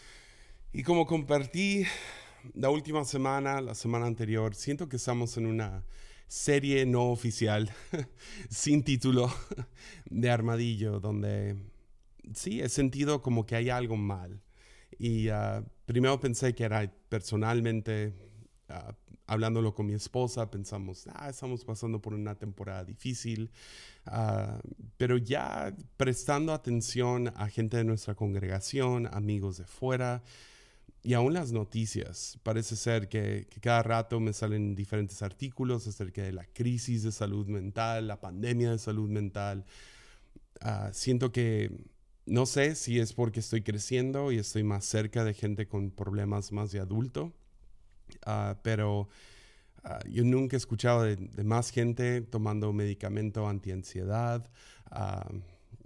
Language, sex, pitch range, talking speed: Spanish, male, 105-125 Hz, 135 wpm